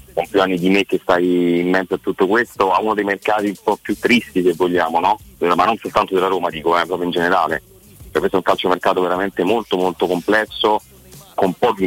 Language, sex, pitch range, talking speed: Italian, male, 85-100 Hz, 235 wpm